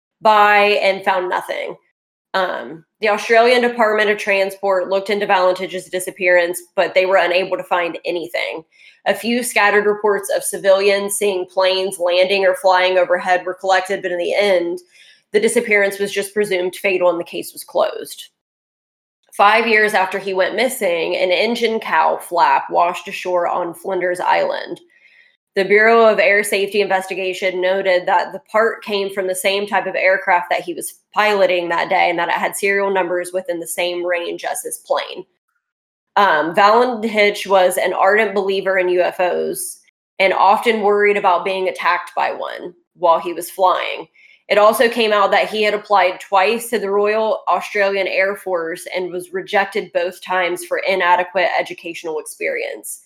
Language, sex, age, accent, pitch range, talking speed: English, female, 20-39, American, 185-210 Hz, 165 wpm